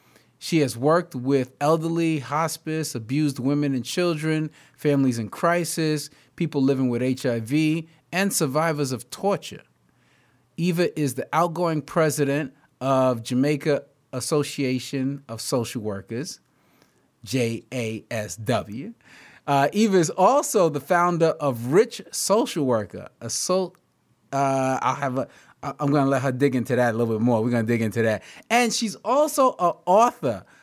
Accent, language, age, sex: American, English, 30-49, male